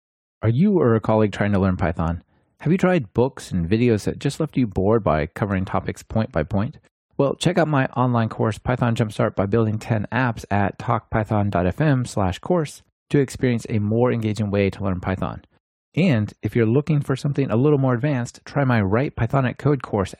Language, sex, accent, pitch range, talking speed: English, male, American, 105-135 Hz, 200 wpm